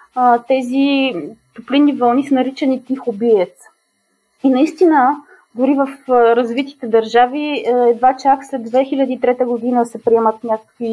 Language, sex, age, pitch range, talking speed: Bulgarian, female, 20-39, 230-275 Hz, 115 wpm